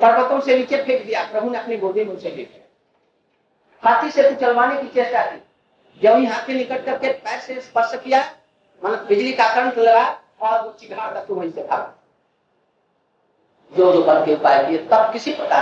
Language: Hindi